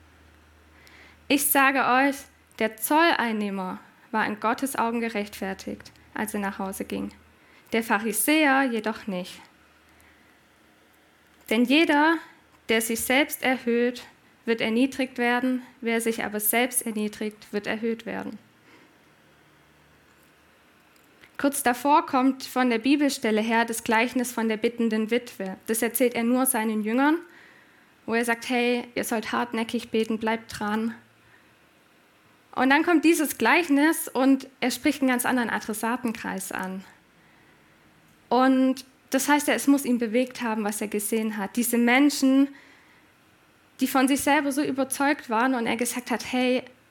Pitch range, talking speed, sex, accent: 225-265 Hz, 135 wpm, female, German